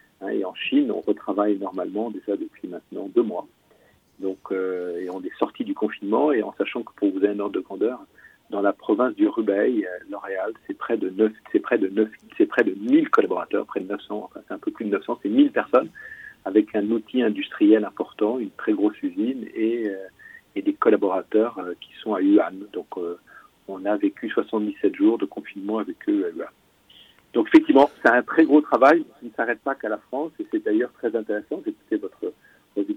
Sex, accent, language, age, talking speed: male, French, French, 50-69, 190 wpm